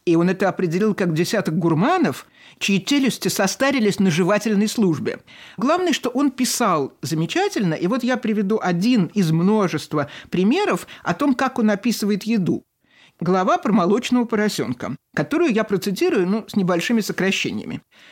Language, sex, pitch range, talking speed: Russian, male, 180-245 Hz, 140 wpm